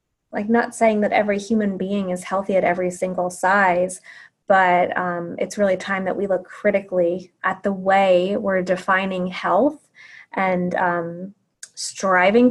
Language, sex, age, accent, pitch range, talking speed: English, female, 20-39, American, 180-220 Hz, 150 wpm